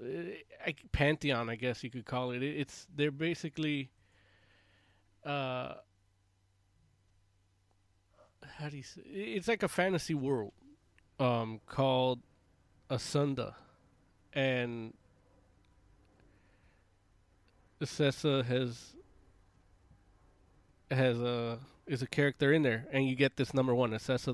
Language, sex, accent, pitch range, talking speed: English, male, American, 95-130 Hz, 100 wpm